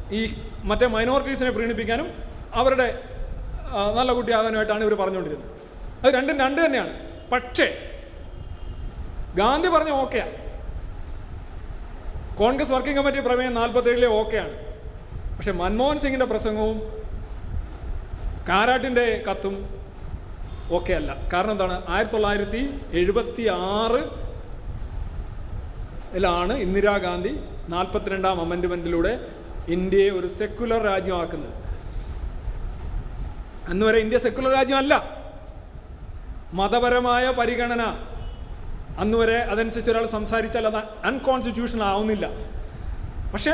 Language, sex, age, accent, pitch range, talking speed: Malayalam, male, 30-49, native, 190-250 Hz, 85 wpm